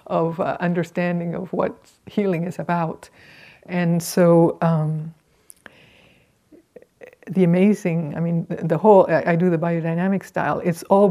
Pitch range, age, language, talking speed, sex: 170-200 Hz, 50-69, English, 130 wpm, female